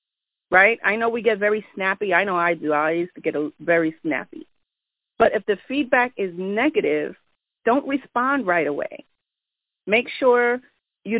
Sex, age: female, 40-59